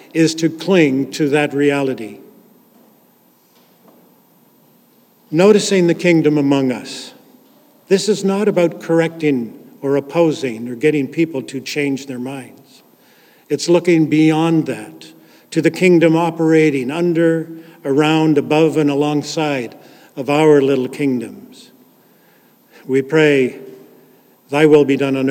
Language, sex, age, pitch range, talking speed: English, male, 50-69, 135-165 Hz, 115 wpm